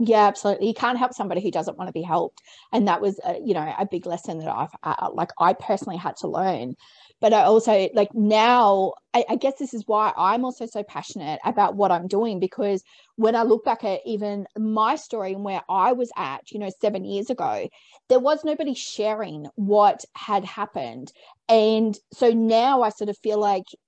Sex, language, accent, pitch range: female, English, Australian, 205-260 Hz